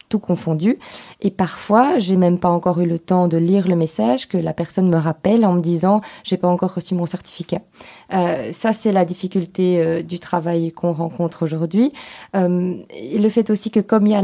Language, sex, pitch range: French, female, 175-200 Hz